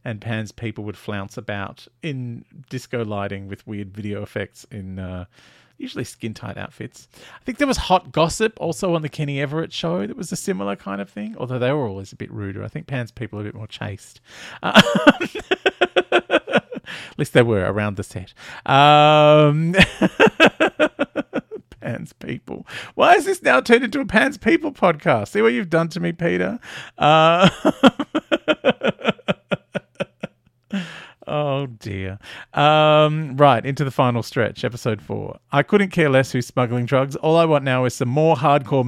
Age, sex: 40-59, male